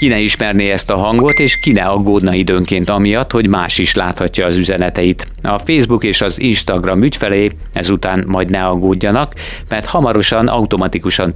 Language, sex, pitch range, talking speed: Hungarian, male, 90-105 Hz, 160 wpm